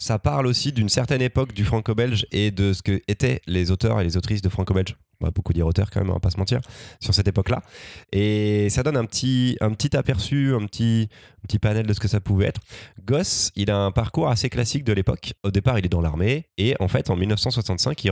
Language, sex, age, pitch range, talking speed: French, male, 20-39, 90-115 Hz, 245 wpm